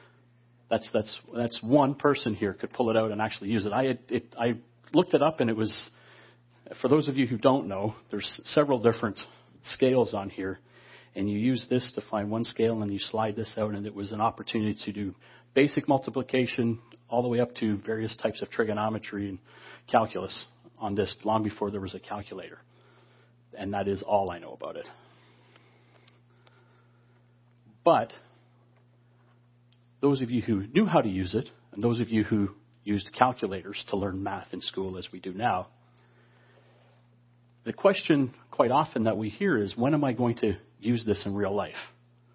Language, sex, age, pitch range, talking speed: English, male, 40-59, 105-120 Hz, 185 wpm